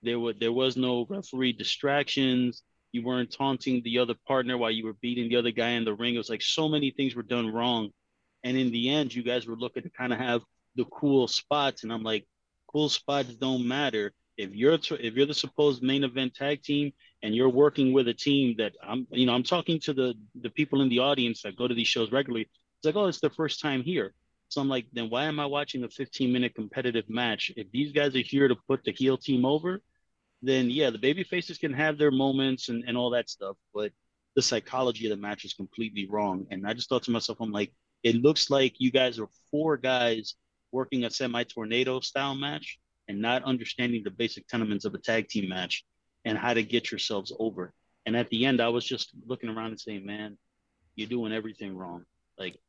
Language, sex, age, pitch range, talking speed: English, male, 30-49, 115-135 Hz, 225 wpm